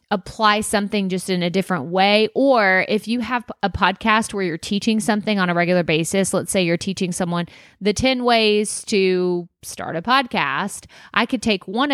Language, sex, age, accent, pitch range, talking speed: English, female, 30-49, American, 180-220 Hz, 185 wpm